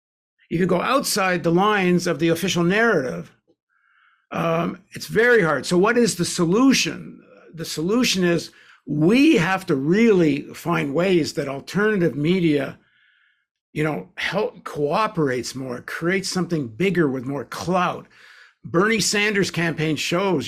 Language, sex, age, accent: English, male, 60-79, American